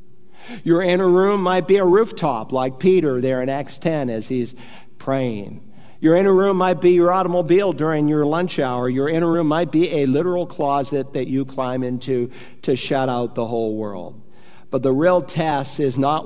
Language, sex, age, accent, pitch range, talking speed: English, male, 50-69, American, 135-180 Hz, 190 wpm